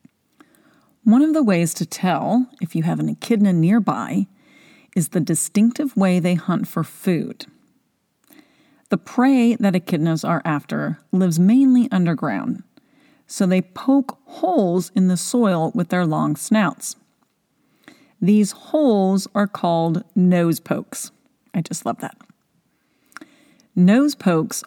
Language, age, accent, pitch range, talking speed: English, 40-59, American, 170-245 Hz, 125 wpm